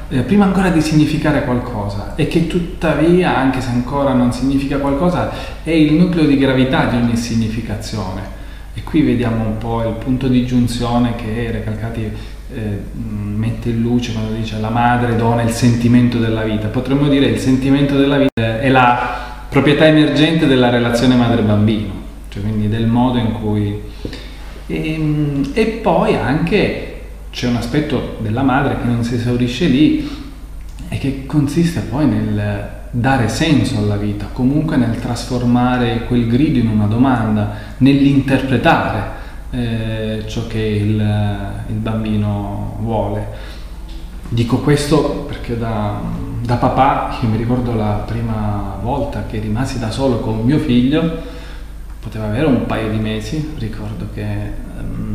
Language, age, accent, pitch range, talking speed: Italian, 30-49, native, 110-135 Hz, 145 wpm